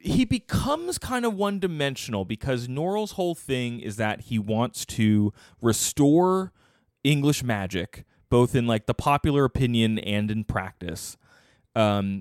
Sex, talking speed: male, 140 wpm